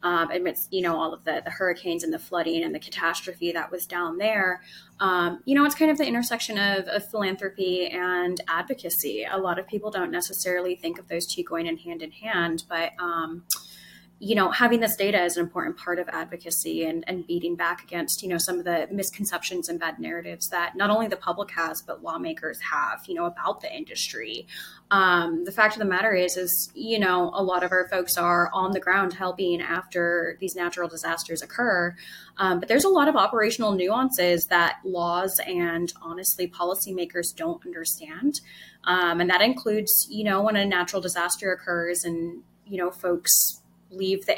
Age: 20-39